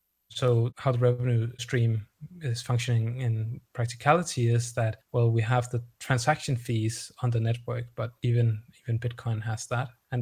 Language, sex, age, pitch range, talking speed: English, male, 20-39, 115-125 Hz, 160 wpm